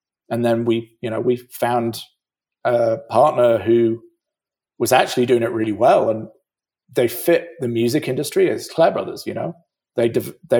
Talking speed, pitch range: 170 wpm, 115-140 Hz